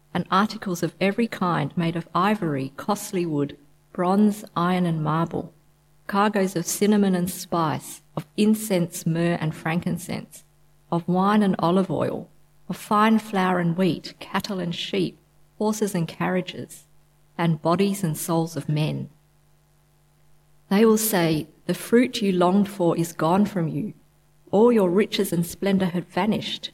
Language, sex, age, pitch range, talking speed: English, female, 50-69, 155-195 Hz, 145 wpm